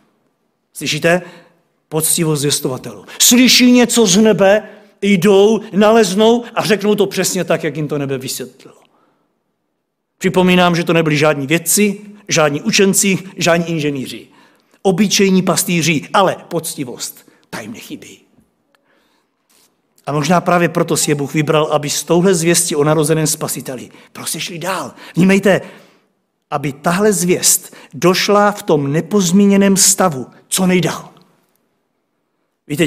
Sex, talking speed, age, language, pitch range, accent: male, 120 wpm, 50-69, Czech, 155-210 Hz, native